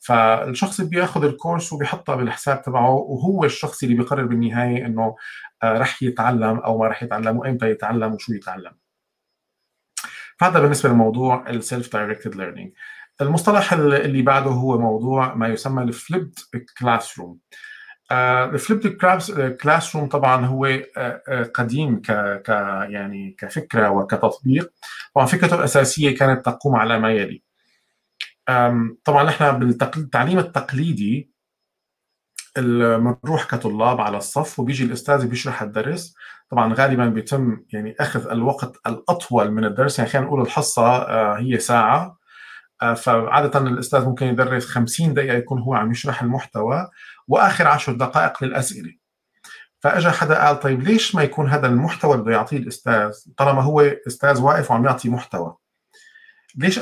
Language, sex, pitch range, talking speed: Arabic, male, 115-145 Hz, 125 wpm